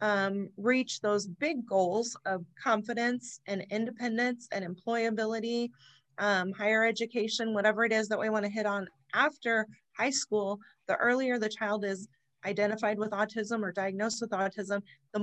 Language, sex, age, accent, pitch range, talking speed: English, female, 30-49, American, 195-225 Hz, 155 wpm